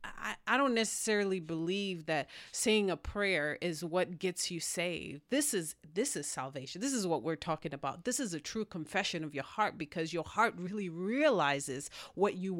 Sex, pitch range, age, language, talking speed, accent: female, 160-205 Hz, 30-49, English, 190 wpm, American